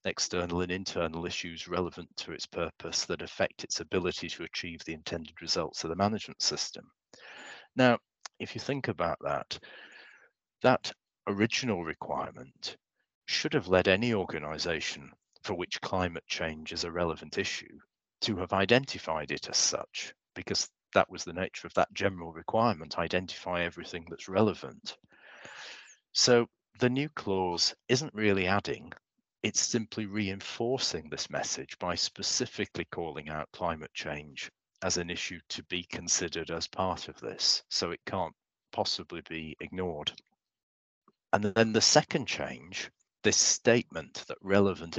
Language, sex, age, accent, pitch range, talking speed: English, male, 40-59, British, 85-105 Hz, 140 wpm